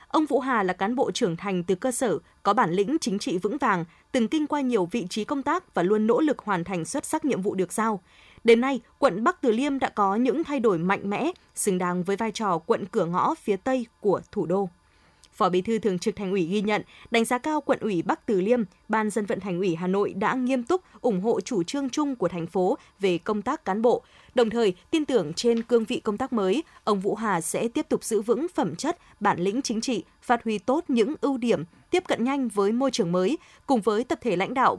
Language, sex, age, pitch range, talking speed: Vietnamese, female, 20-39, 195-250 Hz, 255 wpm